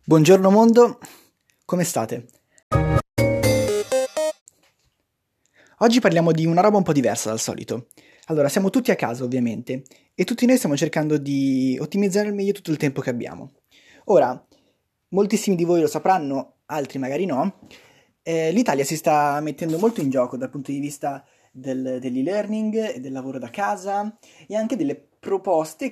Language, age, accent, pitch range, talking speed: Italian, 20-39, native, 130-205 Hz, 155 wpm